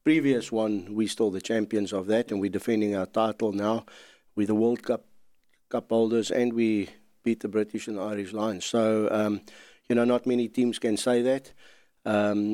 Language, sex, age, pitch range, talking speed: English, male, 60-79, 105-120 Hz, 190 wpm